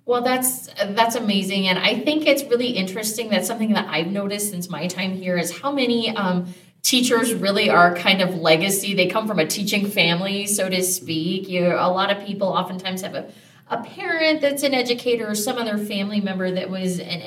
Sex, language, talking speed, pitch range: female, English, 205 wpm, 175-235 Hz